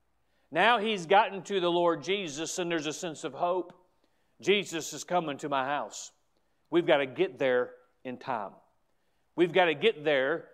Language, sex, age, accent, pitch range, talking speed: English, male, 40-59, American, 160-215 Hz, 175 wpm